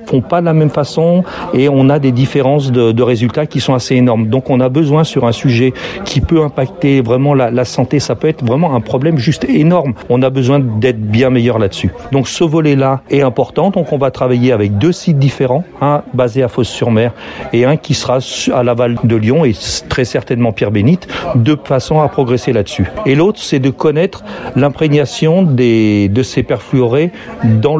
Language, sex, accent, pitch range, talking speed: French, male, French, 120-145 Hz, 200 wpm